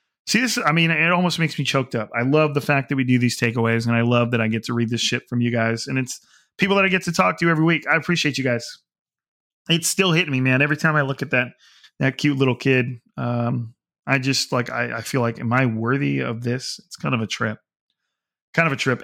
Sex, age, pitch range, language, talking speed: male, 30-49, 130-170 Hz, English, 265 wpm